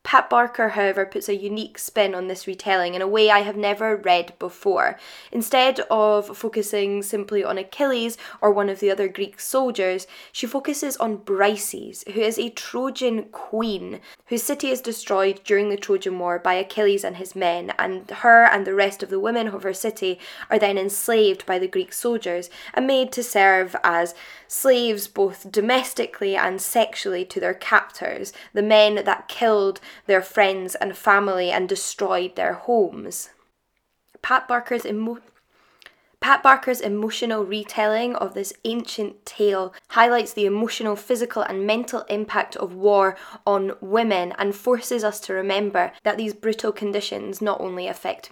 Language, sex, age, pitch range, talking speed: English, female, 10-29, 195-230 Hz, 160 wpm